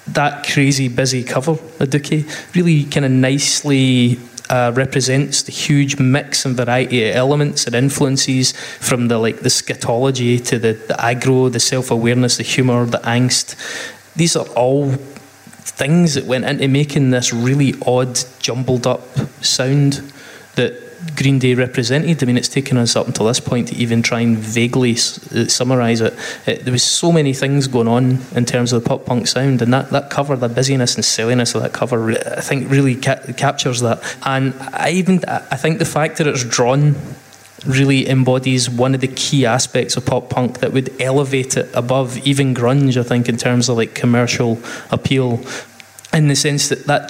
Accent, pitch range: British, 125-140 Hz